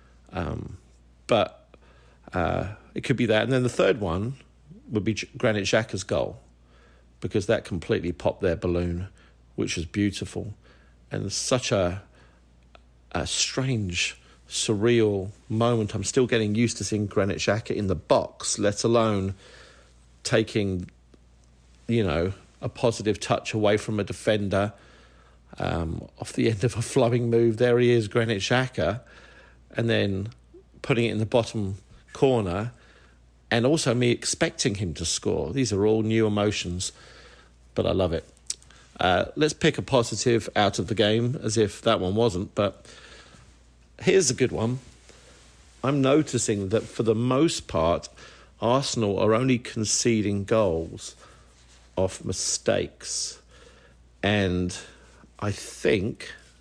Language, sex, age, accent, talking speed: English, male, 50-69, British, 140 wpm